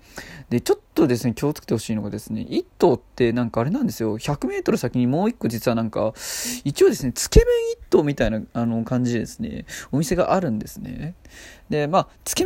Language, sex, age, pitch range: Japanese, male, 20-39, 115-170 Hz